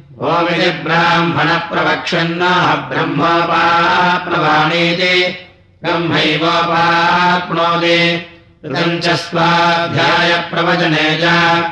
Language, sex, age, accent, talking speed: Russian, male, 60-79, Indian, 70 wpm